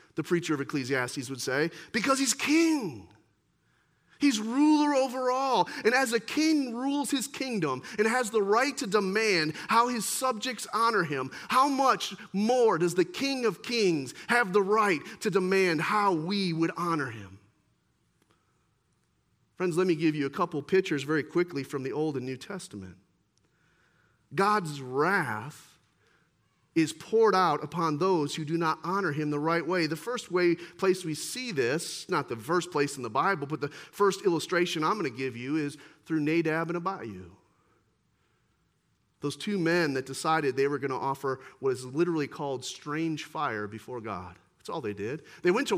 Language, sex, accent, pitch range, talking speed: English, male, American, 145-225 Hz, 175 wpm